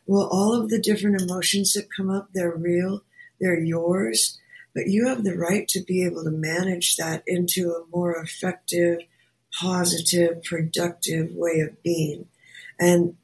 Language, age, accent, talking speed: English, 50-69, American, 155 wpm